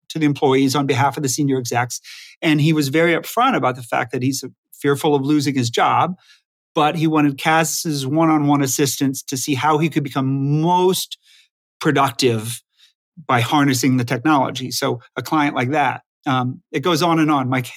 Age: 40-59